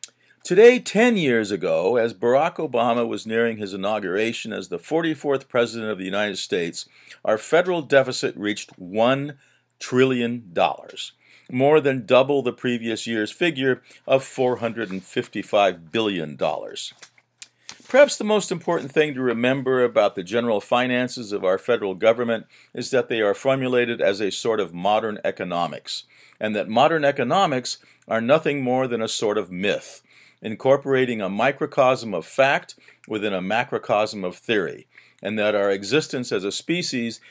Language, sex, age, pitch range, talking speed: English, male, 50-69, 110-140 Hz, 145 wpm